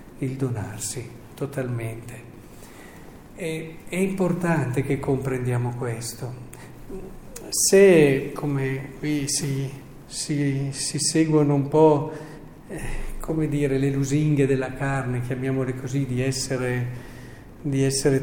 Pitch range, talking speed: 125-150 Hz, 100 wpm